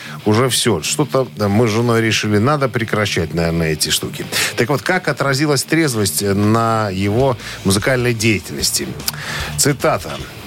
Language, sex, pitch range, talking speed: Russian, male, 105-145 Hz, 125 wpm